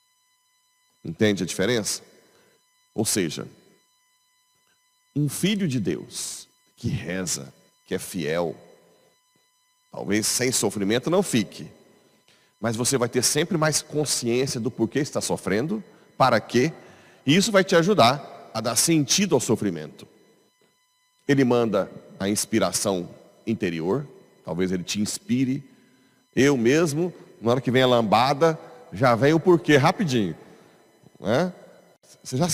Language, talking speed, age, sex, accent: Portuguese, 125 wpm, 40-59, male, Brazilian